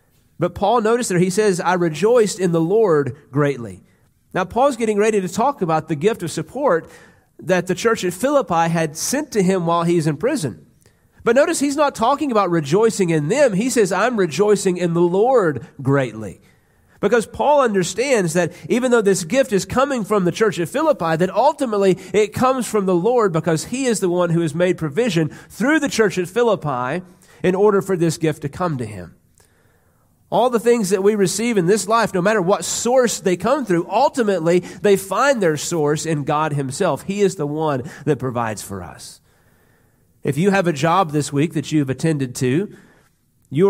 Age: 40-59